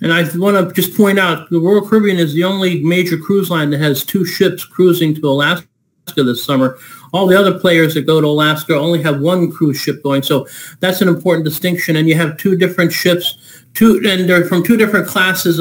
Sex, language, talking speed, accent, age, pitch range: male, English, 220 wpm, American, 50-69, 150-180 Hz